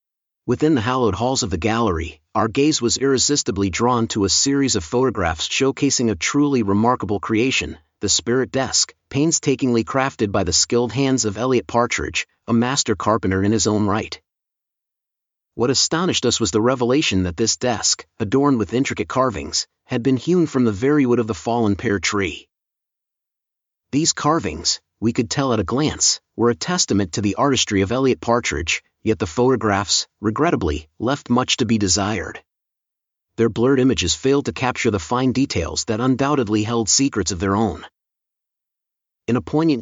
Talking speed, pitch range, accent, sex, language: 165 wpm, 105-130 Hz, American, male, English